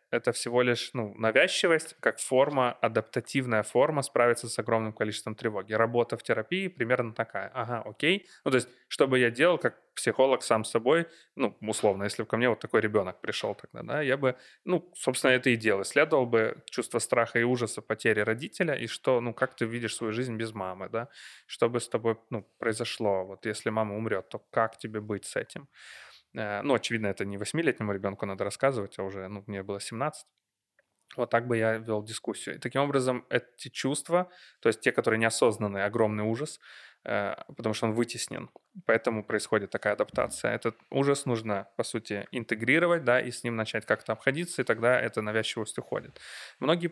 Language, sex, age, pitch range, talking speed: Ukrainian, male, 20-39, 110-130 Hz, 185 wpm